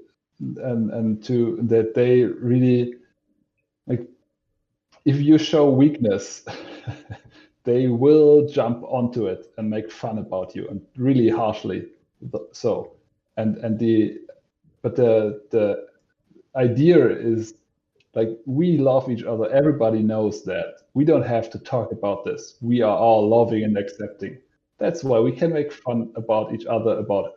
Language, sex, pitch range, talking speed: English, male, 110-140 Hz, 140 wpm